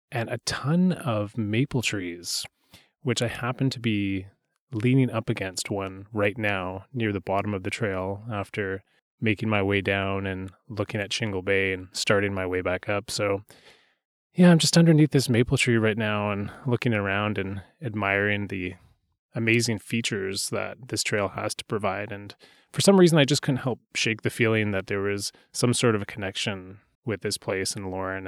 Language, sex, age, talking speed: English, male, 20-39, 185 wpm